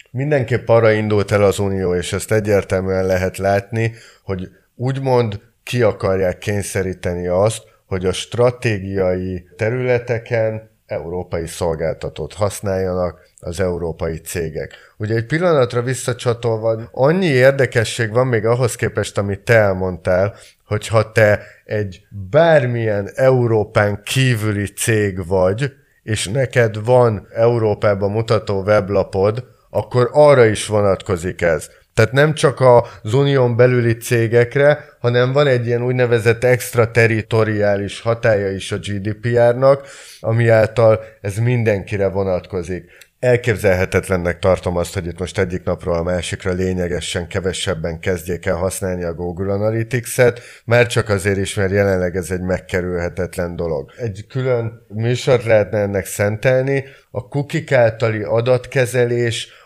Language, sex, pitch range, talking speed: Hungarian, male, 95-120 Hz, 120 wpm